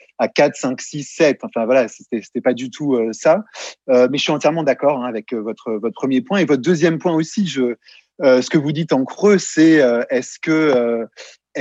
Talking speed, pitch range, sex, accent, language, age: 225 wpm, 135-180 Hz, male, French, French, 30-49